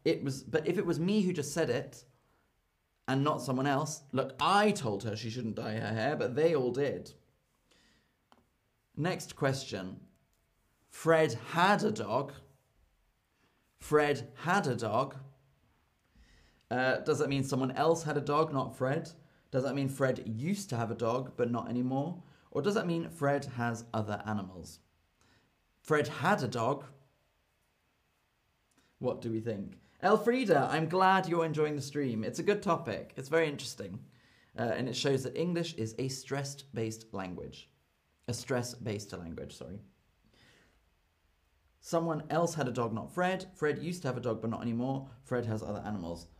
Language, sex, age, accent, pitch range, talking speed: English, male, 30-49, British, 115-150 Hz, 160 wpm